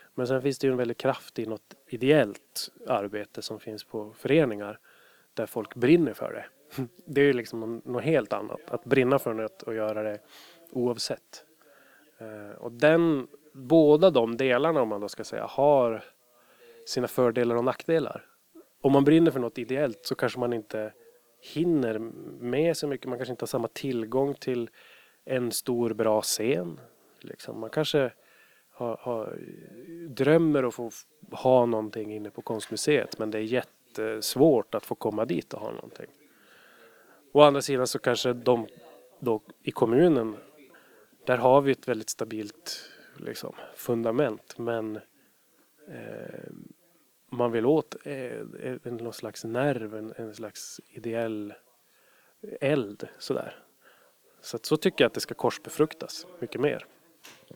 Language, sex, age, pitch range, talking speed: Swedish, male, 20-39, 110-140 Hz, 150 wpm